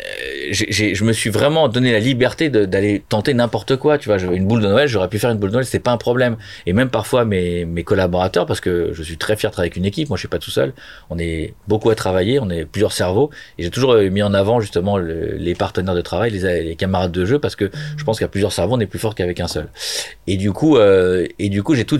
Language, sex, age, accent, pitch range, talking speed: French, male, 40-59, French, 95-120 Hz, 285 wpm